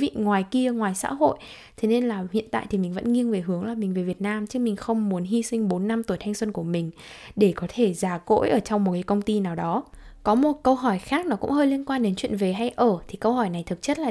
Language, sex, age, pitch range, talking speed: Vietnamese, female, 10-29, 185-245 Hz, 300 wpm